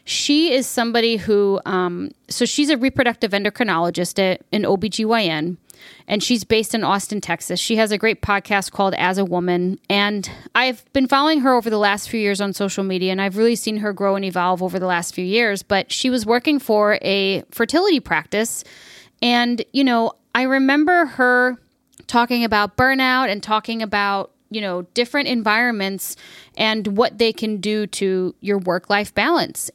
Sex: female